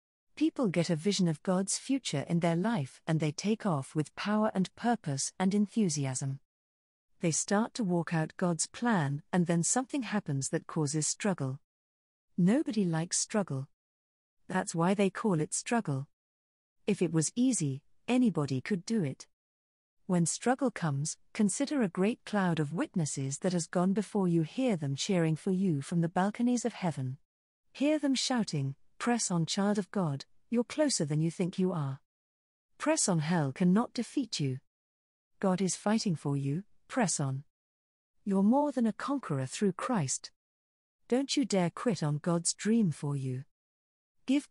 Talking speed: 160 wpm